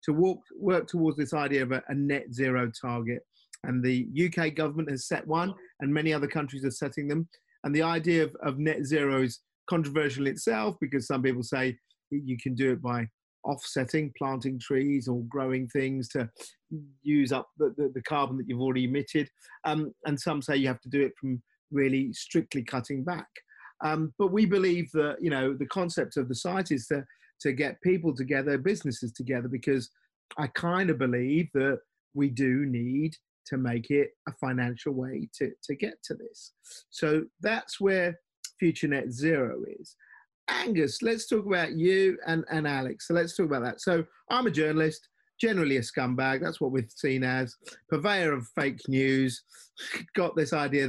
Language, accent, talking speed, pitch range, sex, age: English, British, 185 wpm, 130-165 Hz, male, 40-59